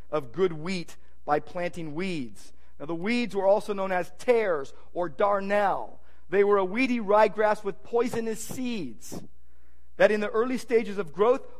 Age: 40-59